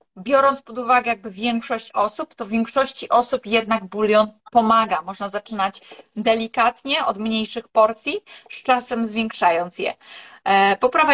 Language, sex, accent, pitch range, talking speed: Polish, female, native, 205-240 Hz, 130 wpm